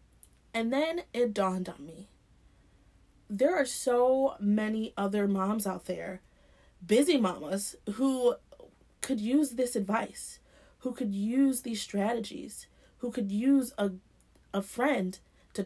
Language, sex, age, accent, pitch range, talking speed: English, female, 30-49, American, 195-245 Hz, 125 wpm